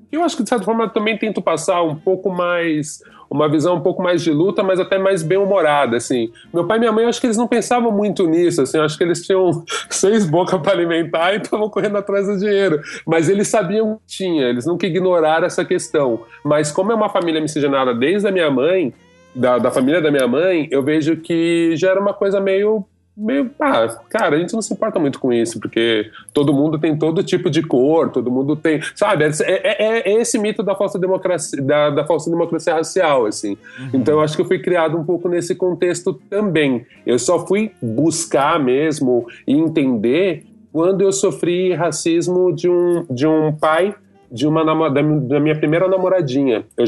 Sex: male